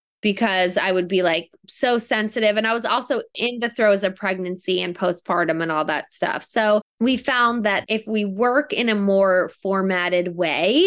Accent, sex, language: American, female, English